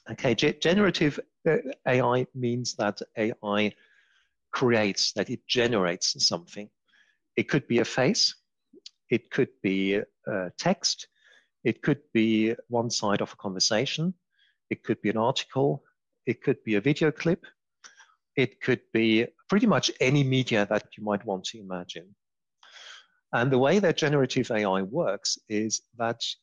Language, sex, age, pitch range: English, male, 50-69, 110-140 Hz